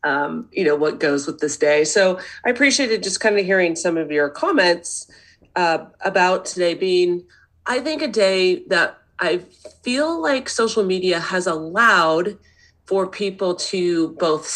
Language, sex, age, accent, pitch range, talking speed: English, female, 30-49, American, 155-215 Hz, 160 wpm